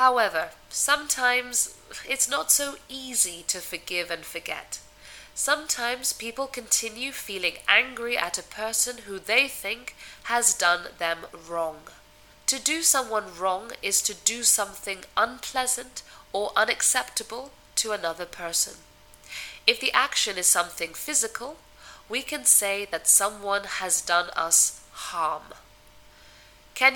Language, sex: English, female